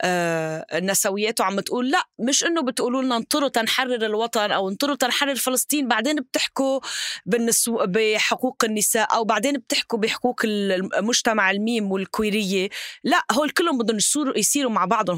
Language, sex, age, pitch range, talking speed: Arabic, female, 20-39, 195-260 Hz, 135 wpm